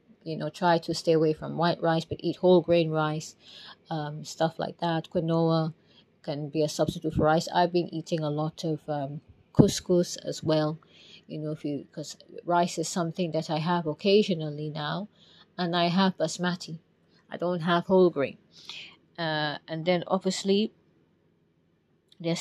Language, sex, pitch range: English, female, 160-190 Hz